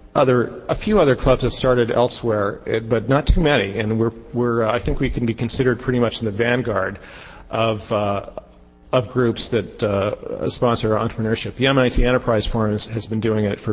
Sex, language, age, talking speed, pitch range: male, English, 40-59, 190 wpm, 105-120 Hz